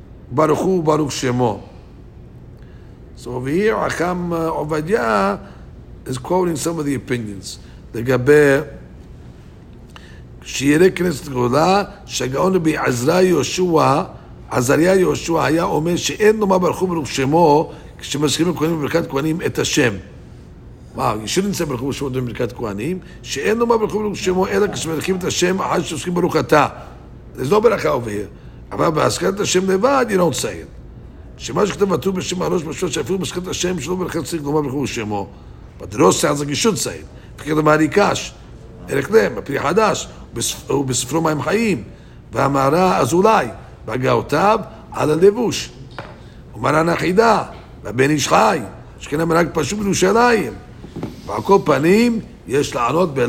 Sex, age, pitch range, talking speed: male, 60-79, 135-185 Hz, 85 wpm